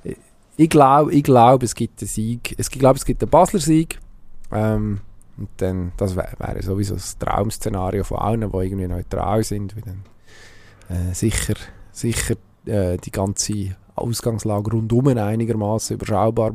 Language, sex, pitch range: German, male, 100-115 Hz